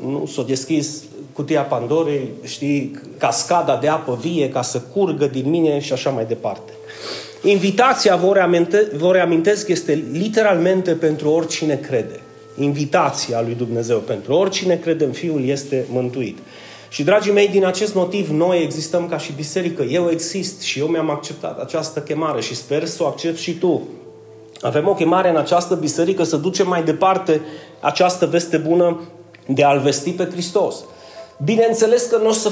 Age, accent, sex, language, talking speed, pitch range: 30-49, native, male, Romanian, 160 wpm, 155-215 Hz